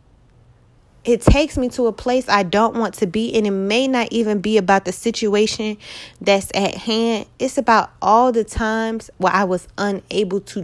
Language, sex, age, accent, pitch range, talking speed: English, female, 20-39, American, 185-235 Hz, 185 wpm